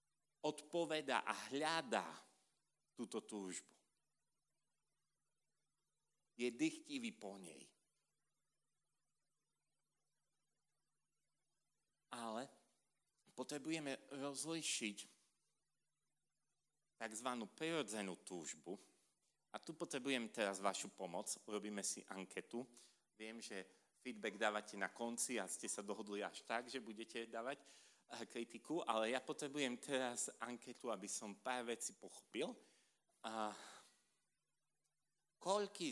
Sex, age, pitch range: male, 40-59, 115-155 Hz